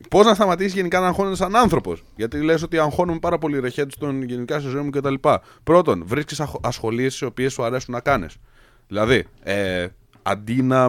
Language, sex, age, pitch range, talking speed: Greek, male, 20-39, 110-160 Hz, 200 wpm